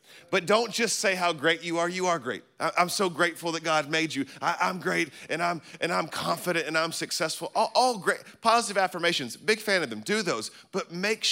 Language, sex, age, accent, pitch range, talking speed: English, male, 40-59, American, 115-155 Hz, 215 wpm